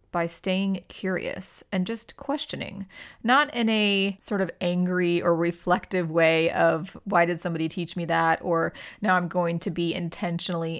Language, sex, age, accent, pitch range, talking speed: English, female, 30-49, American, 170-195 Hz, 160 wpm